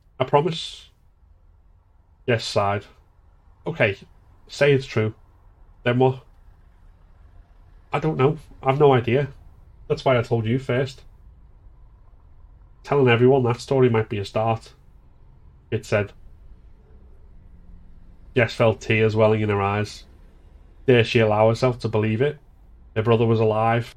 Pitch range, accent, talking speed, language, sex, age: 90-120 Hz, British, 130 wpm, English, male, 30-49